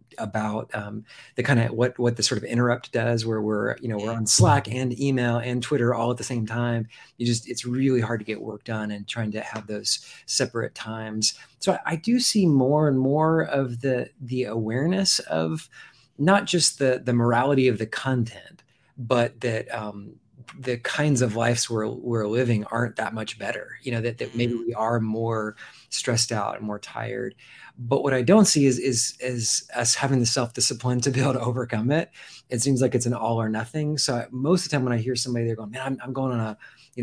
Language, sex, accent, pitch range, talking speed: English, male, American, 115-135 Hz, 225 wpm